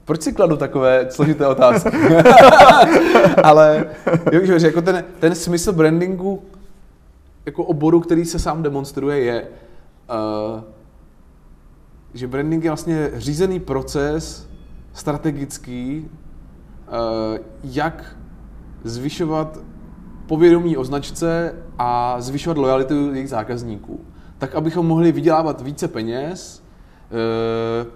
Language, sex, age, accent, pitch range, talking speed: Czech, male, 20-39, native, 130-165 Hz, 100 wpm